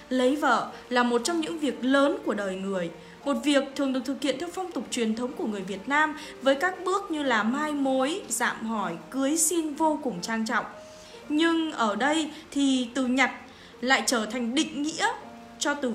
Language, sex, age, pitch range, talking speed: Vietnamese, female, 10-29, 220-305 Hz, 205 wpm